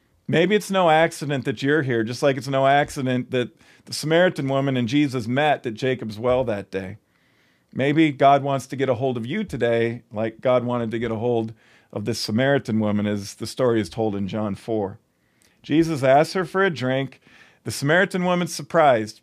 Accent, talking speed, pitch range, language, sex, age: American, 195 wpm, 115-155 Hz, English, male, 40-59